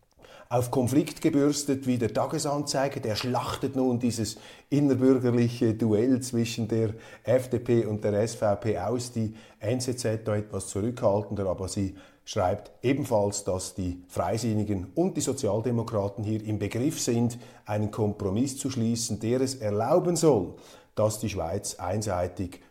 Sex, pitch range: male, 105-135 Hz